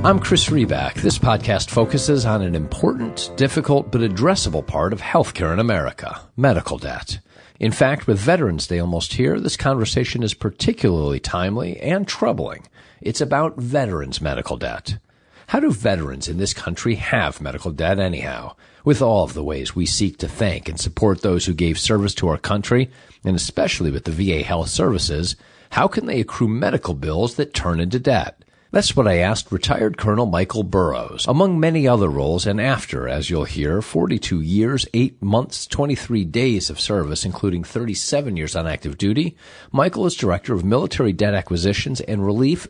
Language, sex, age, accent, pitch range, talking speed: English, male, 50-69, American, 85-120 Hz, 175 wpm